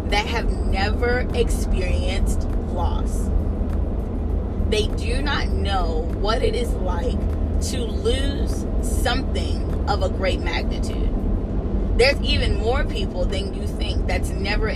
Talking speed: 120 wpm